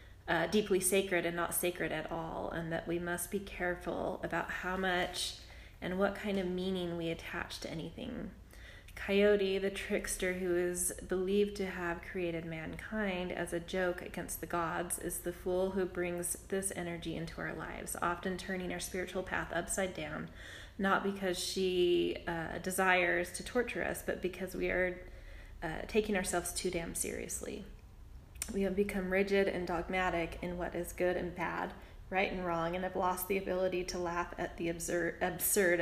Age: 20-39